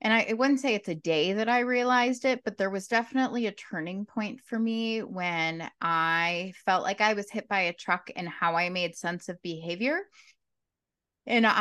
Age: 20-39